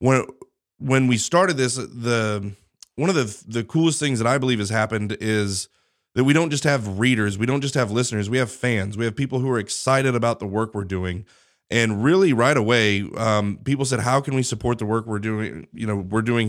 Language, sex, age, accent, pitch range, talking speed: English, male, 30-49, American, 110-130 Hz, 225 wpm